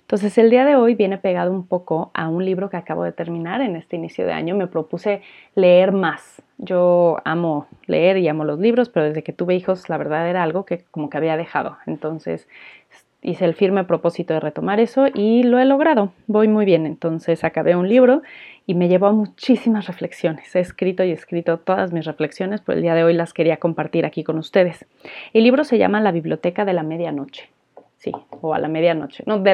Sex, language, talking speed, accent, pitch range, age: female, Spanish, 215 wpm, Mexican, 165-210 Hz, 30-49